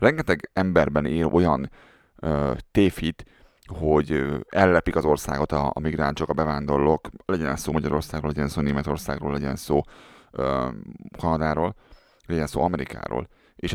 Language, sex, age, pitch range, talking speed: Hungarian, male, 30-49, 80-90 Hz, 130 wpm